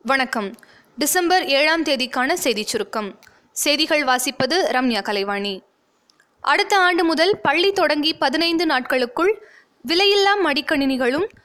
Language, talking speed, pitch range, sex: Tamil, 90 wpm, 255-345 Hz, female